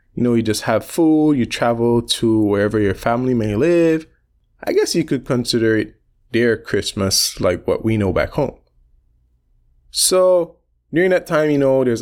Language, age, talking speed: English, 20-39, 175 wpm